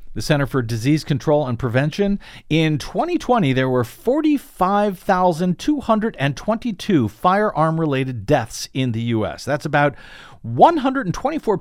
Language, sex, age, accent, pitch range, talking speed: English, male, 50-69, American, 130-185 Hz, 105 wpm